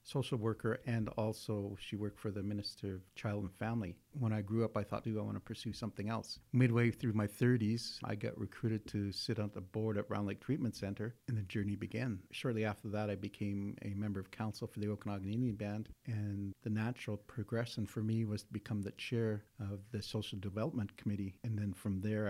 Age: 50-69